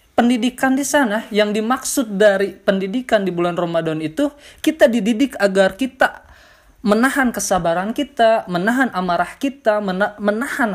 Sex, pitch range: male, 190-255 Hz